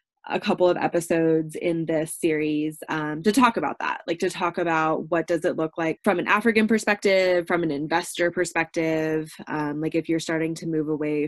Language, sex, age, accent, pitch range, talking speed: English, female, 20-39, American, 160-210 Hz, 195 wpm